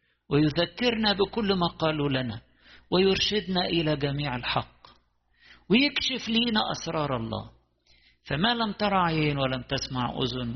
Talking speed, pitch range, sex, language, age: 110 wpm, 120-180 Hz, male, English, 50-69